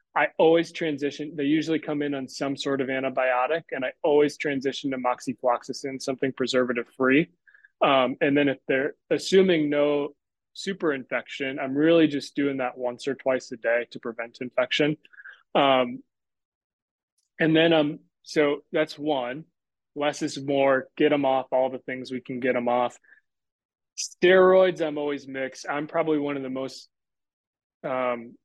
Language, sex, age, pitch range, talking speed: English, male, 20-39, 130-150 Hz, 160 wpm